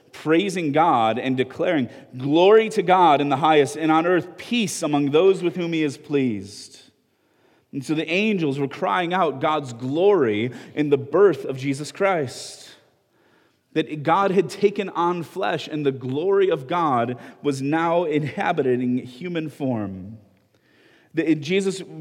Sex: male